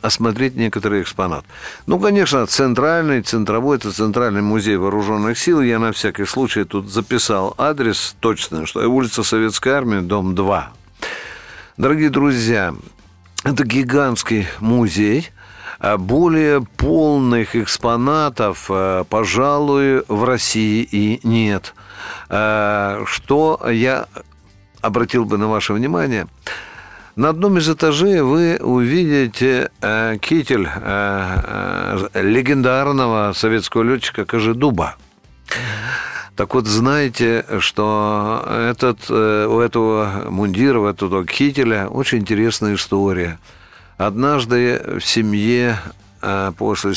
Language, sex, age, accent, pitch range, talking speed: Russian, male, 50-69, native, 100-130 Hz, 100 wpm